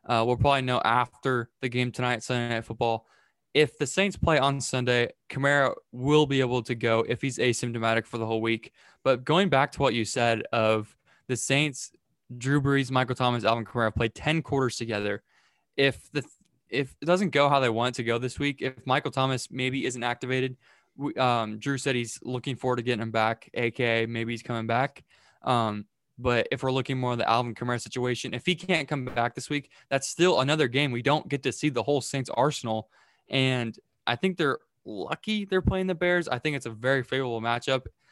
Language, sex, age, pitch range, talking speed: English, male, 20-39, 120-145 Hz, 210 wpm